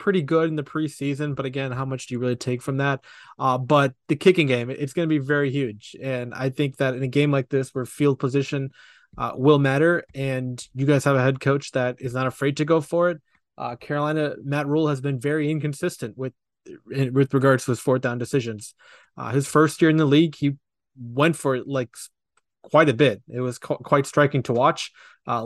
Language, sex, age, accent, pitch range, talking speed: English, male, 20-39, American, 125-145 Hz, 220 wpm